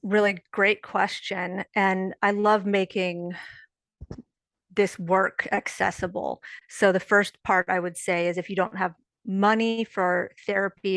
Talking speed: 135 wpm